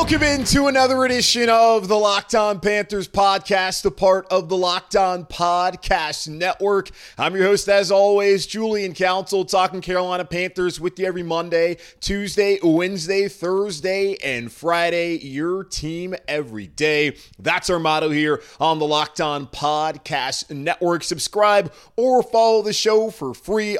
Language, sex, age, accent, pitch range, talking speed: English, male, 30-49, American, 155-200 Hz, 135 wpm